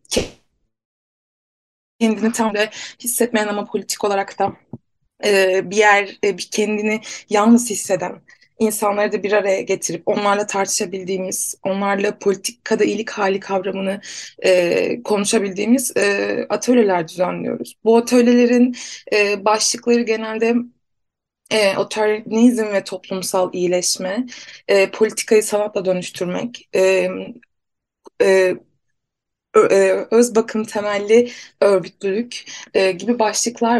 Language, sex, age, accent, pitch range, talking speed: Turkish, female, 20-39, native, 195-230 Hz, 100 wpm